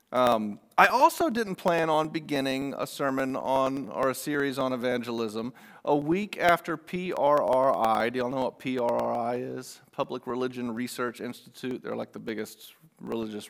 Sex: male